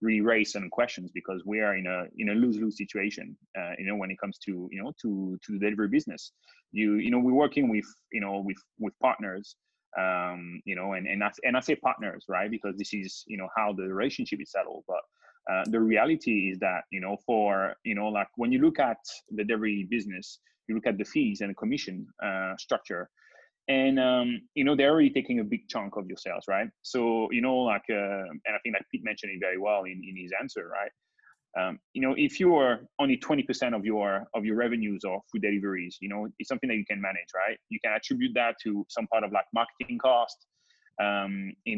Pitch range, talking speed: 100-125 Hz, 230 wpm